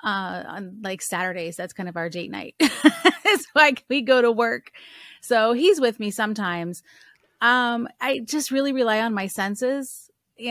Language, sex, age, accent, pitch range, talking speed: English, female, 30-49, American, 205-265 Hz, 170 wpm